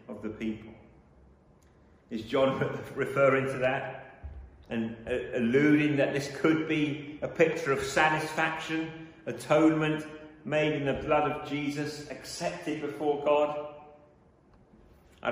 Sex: male